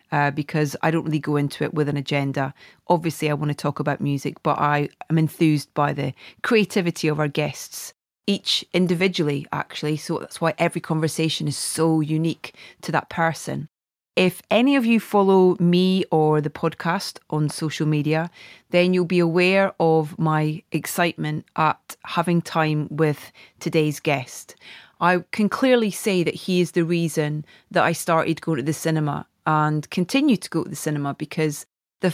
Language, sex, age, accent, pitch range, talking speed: English, female, 30-49, British, 150-175 Hz, 170 wpm